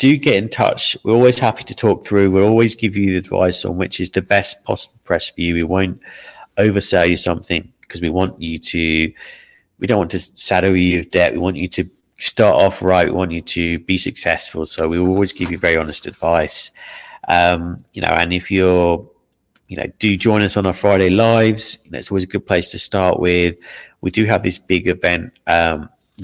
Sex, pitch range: male, 85-100 Hz